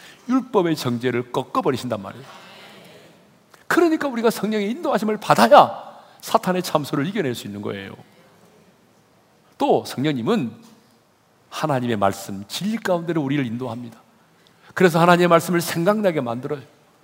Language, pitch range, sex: Korean, 135-215 Hz, male